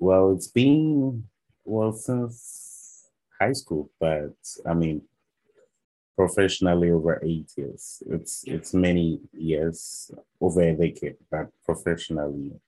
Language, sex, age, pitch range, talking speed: English, male, 30-49, 75-85 Hz, 110 wpm